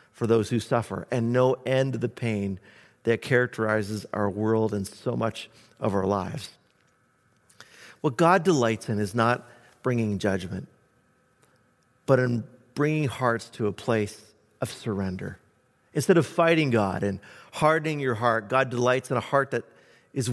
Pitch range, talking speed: 110-135 Hz, 155 wpm